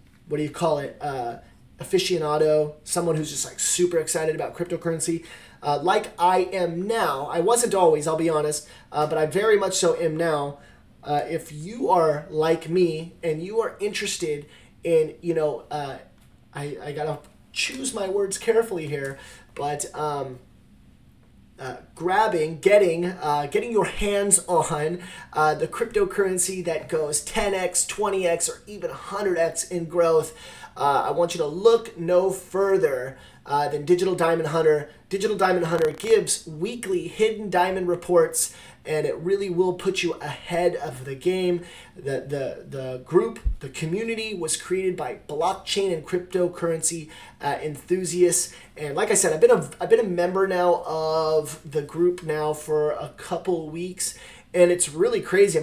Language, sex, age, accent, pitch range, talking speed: English, male, 30-49, American, 155-190 Hz, 160 wpm